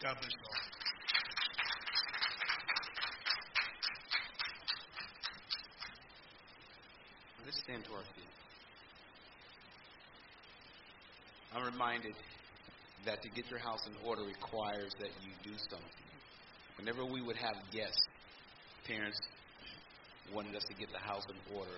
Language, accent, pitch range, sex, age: English, American, 95-110 Hz, male, 50-69